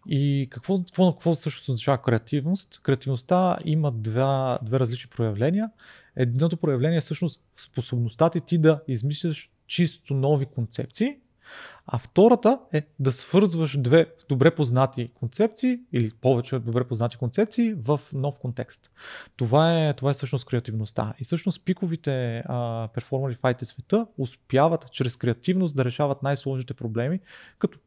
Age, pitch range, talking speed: 30-49, 120-160 Hz, 130 wpm